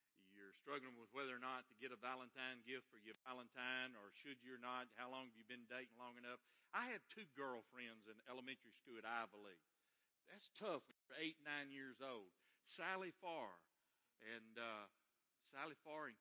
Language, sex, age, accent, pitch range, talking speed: English, male, 50-69, American, 115-155 Hz, 180 wpm